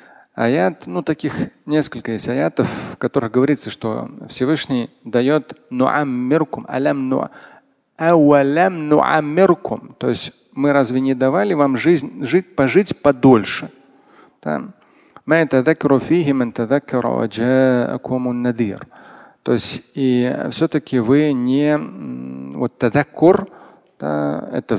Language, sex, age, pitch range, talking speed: Russian, male, 40-59, 120-150 Hz, 100 wpm